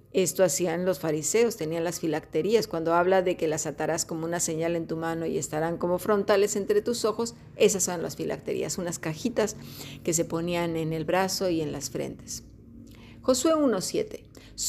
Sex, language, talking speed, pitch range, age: female, Spanish, 180 wpm, 160-210 Hz, 40-59